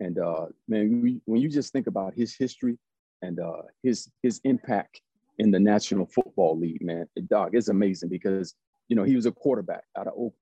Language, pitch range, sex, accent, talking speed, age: English, 100-120 Hz, male, American, 190 wpm, 40-59